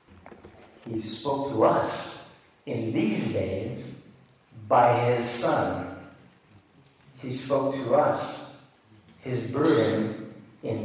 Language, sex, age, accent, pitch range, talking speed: English, male, 40-59, American, 115-140 Hz, 95 wpm